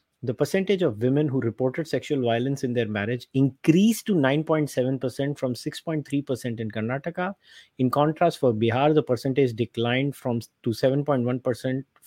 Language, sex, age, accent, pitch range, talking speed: English, male, 30-49, Indian, 125-155 Hz, 140 wpm